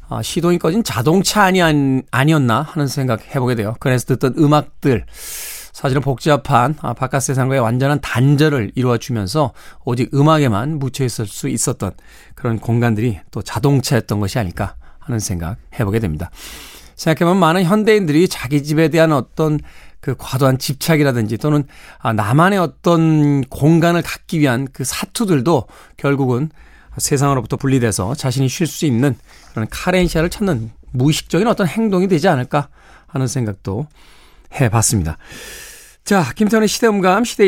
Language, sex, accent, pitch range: Korean, male, native, 125-165 Hz